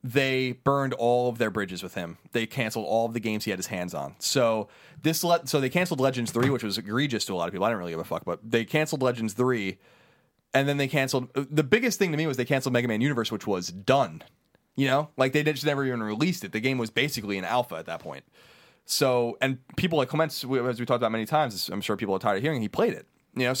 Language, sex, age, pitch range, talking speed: English, male, 30-49, 110-140 Hz, 265 wpm